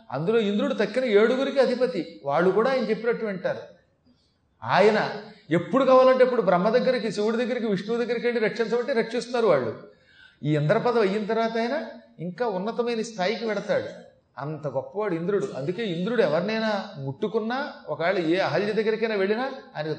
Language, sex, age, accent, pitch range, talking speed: Telugu, male, 40-59, native, 155-230 Hz, 130 wpm